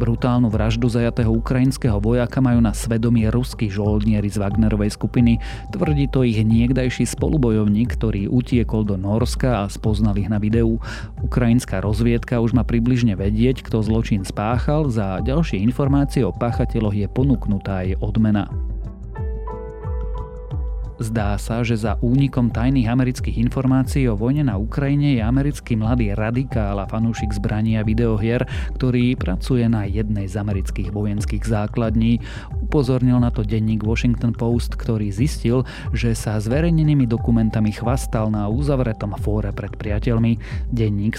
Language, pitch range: Slovak, 105-120 Hz